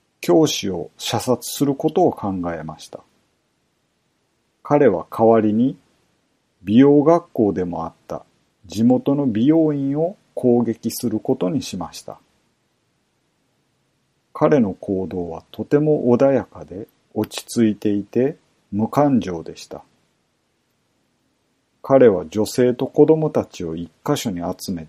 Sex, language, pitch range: male, Japanese, 100-140 Hz